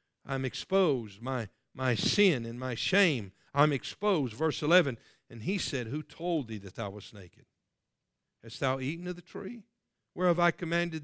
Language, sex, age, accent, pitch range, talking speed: English, male, 50-69, American, 140-190 Hz, 175 wpm